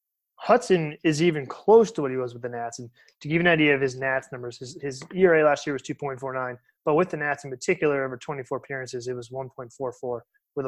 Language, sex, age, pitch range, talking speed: English, male, 20-39, 130-170 Hz, 230 wpm